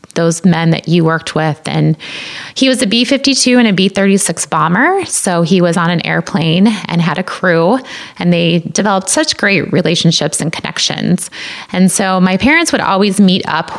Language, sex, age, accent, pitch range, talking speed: English, female, 20-39, American, 165-200 Hz, 180 wpm